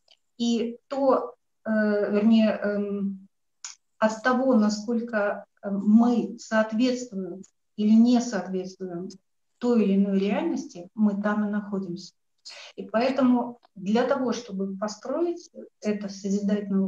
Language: Russian